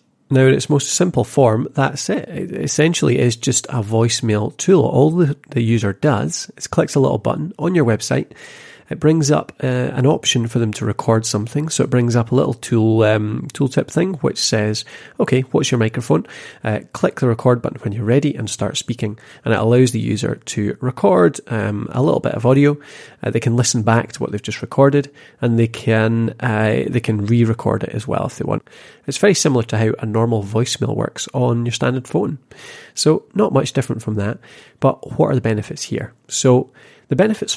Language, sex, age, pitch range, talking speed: English, male, 30-49, 110-140 Hz, 210 wpm